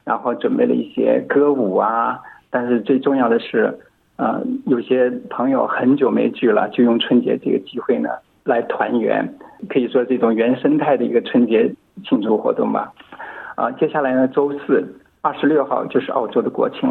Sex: male